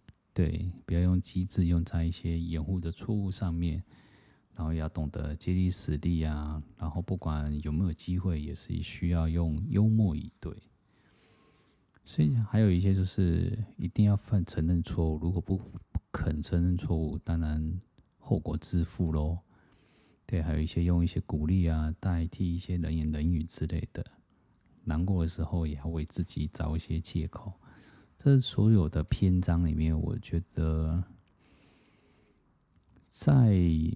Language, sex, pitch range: Chinese, male, 80-95 Hz